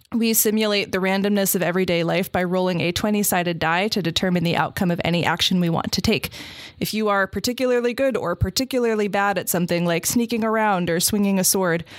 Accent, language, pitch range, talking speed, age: American, English, 170-205 Hz, 200 wpm, 20-39